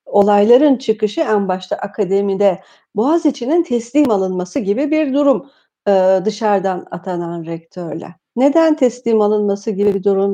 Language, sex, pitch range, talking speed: Turkish, female, 185-250 Hz, 115 wpm